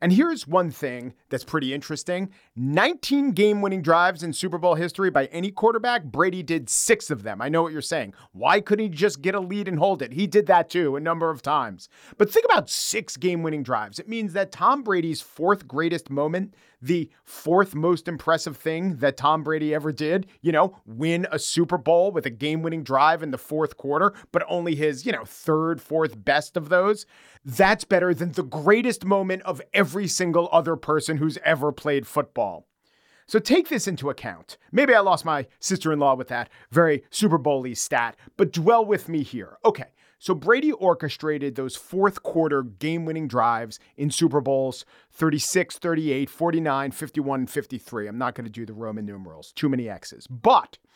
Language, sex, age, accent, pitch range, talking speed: English, male, 40-59, American, 150-200 Hz, 185 wpm